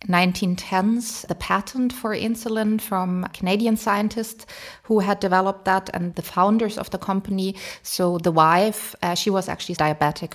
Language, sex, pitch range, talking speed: English, female, 165-205 Hz, 150 wpm